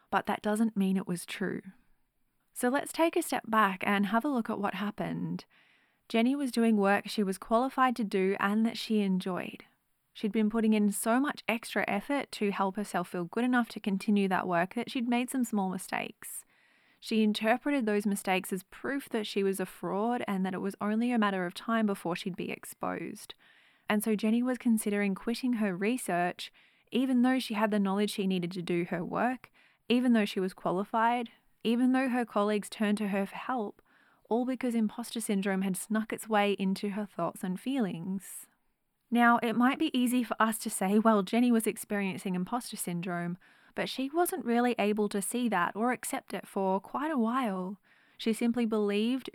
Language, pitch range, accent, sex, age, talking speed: English, 195-235 Hz, Australian, female, 20-39, 195 wpm